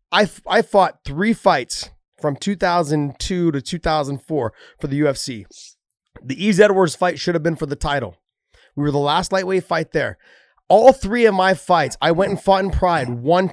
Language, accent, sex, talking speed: English, American, male, 180 wpm